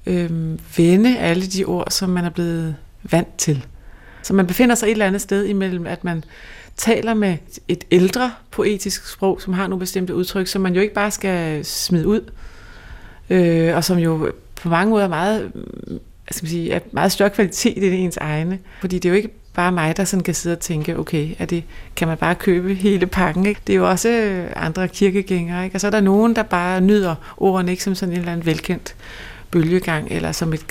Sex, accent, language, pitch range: female, native, Danish, 160-200 Hz